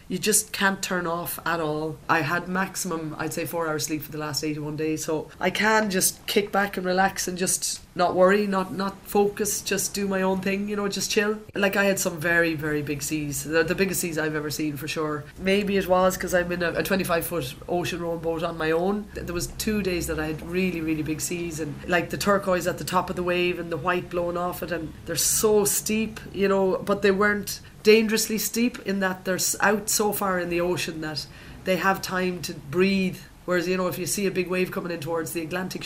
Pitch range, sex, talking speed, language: 160-190 Hz, female, 240 wpm, English